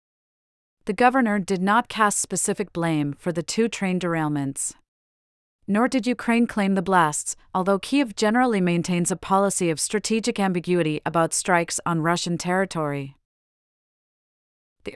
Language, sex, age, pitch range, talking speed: English, female, 40-59, 165-210 Hz, 130 wpm